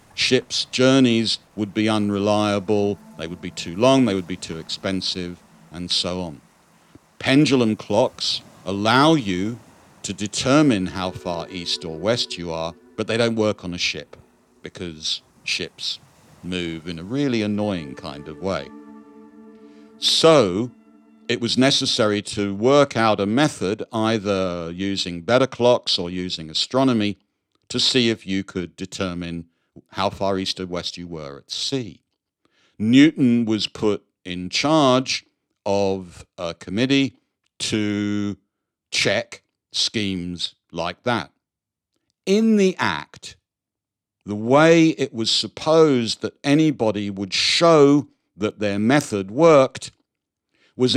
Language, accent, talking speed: English, British, 130 wpm